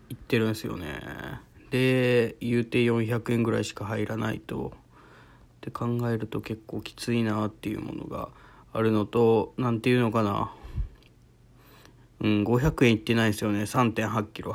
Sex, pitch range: male, 110-130 Hz